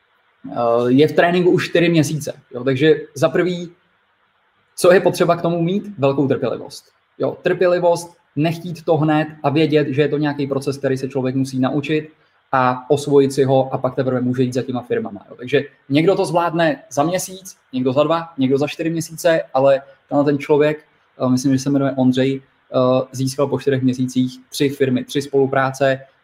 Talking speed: 175 wpm